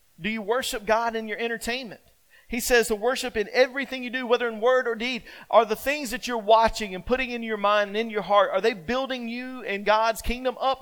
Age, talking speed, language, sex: 40-59, 240 wpm, English, male